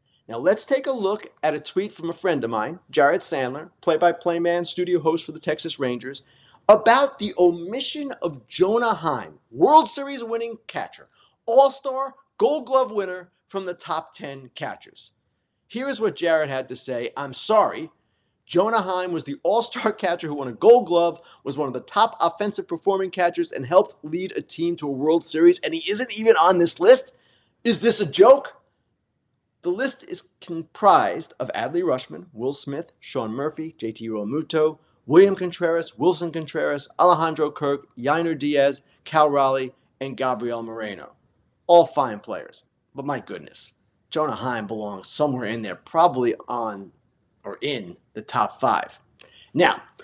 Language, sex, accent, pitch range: English, male, American, 135-200 Hz